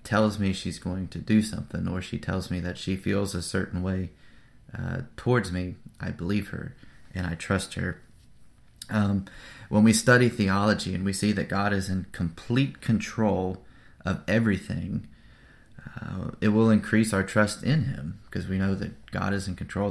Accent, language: American, English